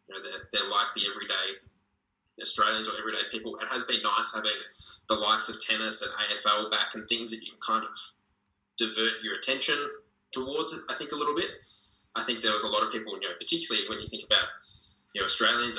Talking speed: 215 wpm